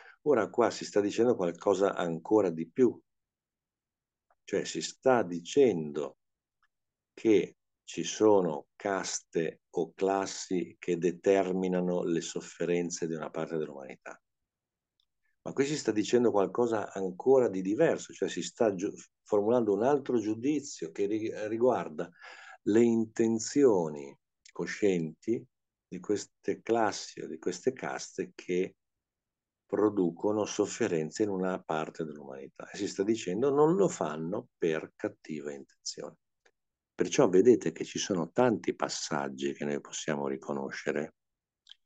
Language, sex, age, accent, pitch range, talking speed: Italian, male, 50-69, native, 80-105 Hz, 120 wpm